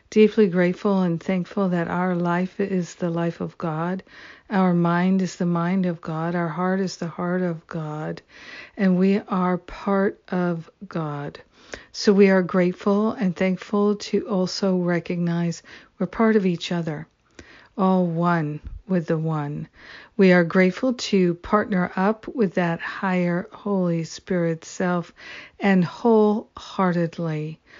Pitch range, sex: 170-200 Hz, female